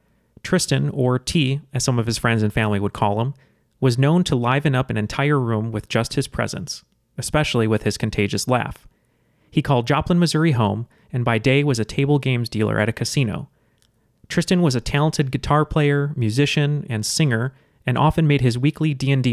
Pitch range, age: 115-140 Hz, 30-49